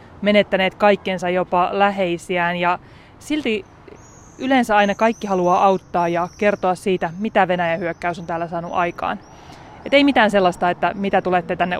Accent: native